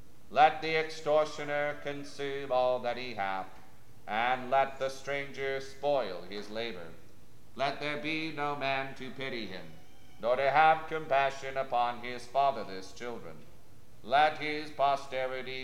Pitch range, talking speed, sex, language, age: 120-140 Hz, 130 wpm, male, English, 40-59